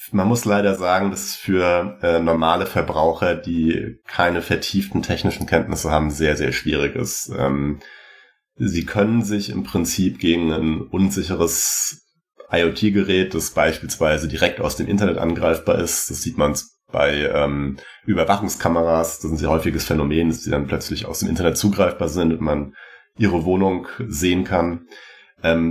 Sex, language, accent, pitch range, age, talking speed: male, German, German, 80-95 Hz, 30-49, 150 wpm